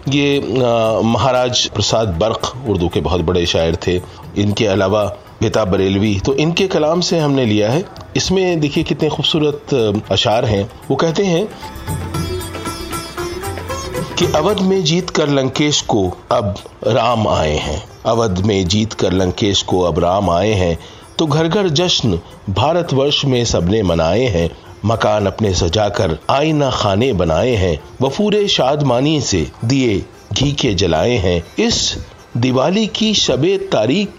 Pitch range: 100-150 Hz